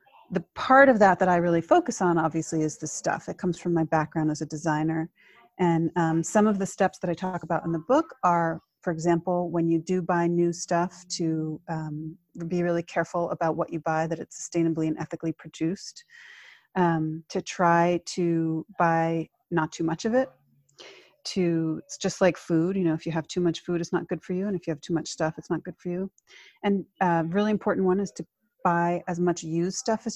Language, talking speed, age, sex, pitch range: English, 225 wpm, 30-49, female, 165-190 Hz